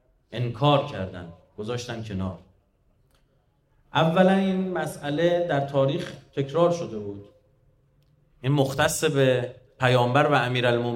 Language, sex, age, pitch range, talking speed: Persian, male, 30-49, 125-155 Hz, 100 wpm